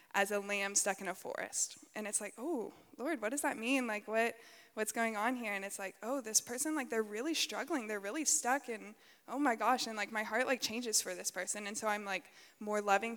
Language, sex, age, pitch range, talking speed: English, female, 20-39, 205-240 Hz, 245 wpm